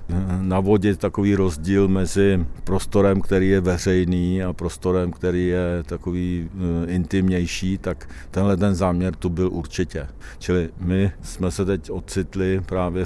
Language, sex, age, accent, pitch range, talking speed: Czech, male, 50-69, native, 85-95 Hz, 130 wpm